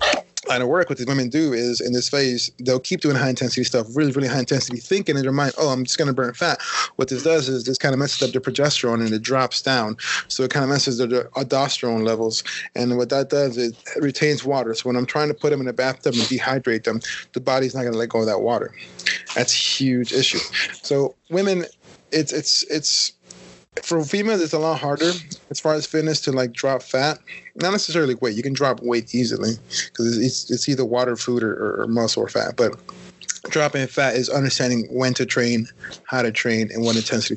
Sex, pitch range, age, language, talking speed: male, 120-140 Hz, 20-39, English, 230 wpm